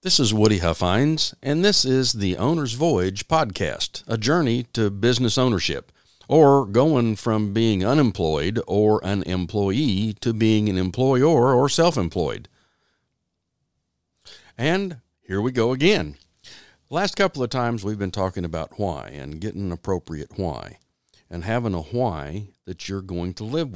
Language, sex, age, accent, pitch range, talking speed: English, male, 50-69, American, 90-130 Hz, 145 wpm